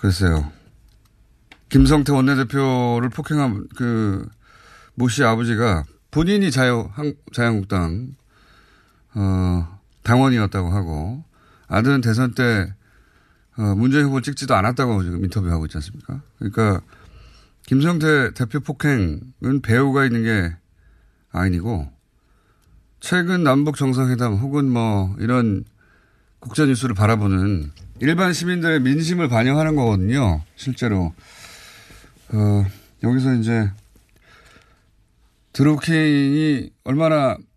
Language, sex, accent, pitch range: Korean, male, native, 100-135 Hz